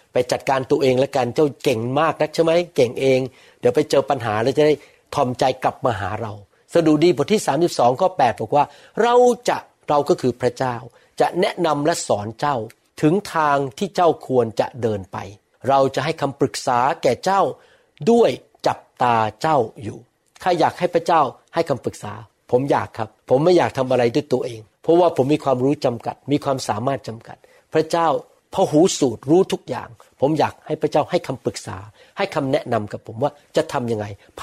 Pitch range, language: 115-165 Hz, Thai